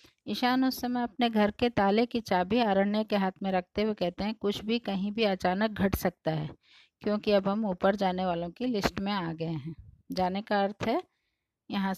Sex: female